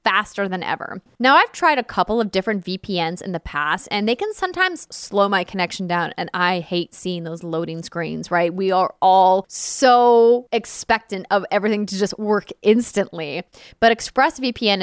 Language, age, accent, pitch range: English, 20-39, American, 185-260 Hz